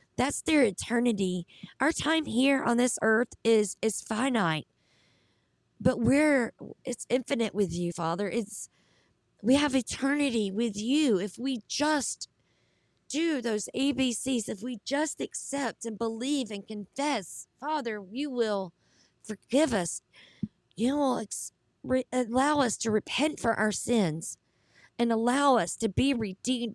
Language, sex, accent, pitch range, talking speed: English, female, American, 205-255 Hz, 135 wpm